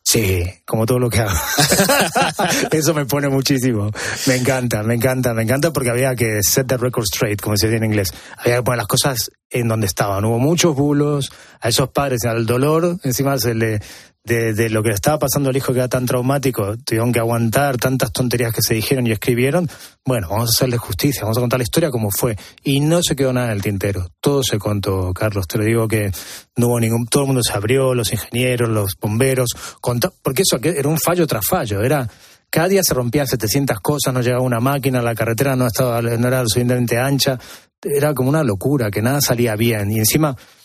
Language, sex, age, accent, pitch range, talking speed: Spanish, male, 20-39, Argentinian, 110-140 Hz, 215 wpm